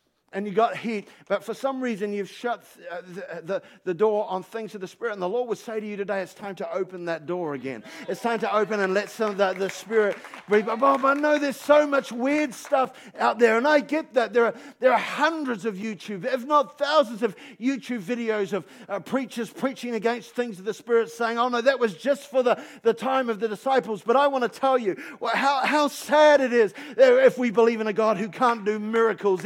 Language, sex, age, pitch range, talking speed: English, male, 50-69, 210-260 Hz, 240 wpm